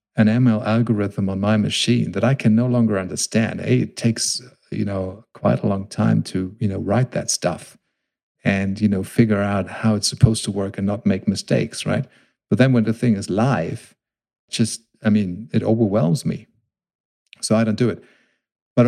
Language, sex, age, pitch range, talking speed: English, male, 50-69, 100-115 Hz, 190 wpm